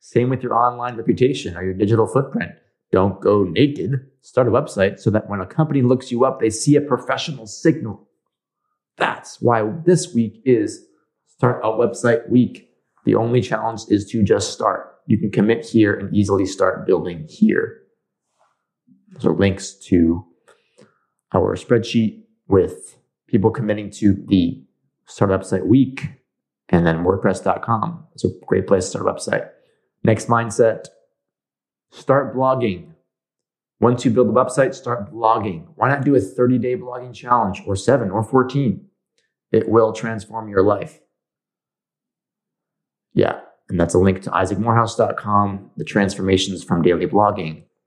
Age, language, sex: 30-49, English, male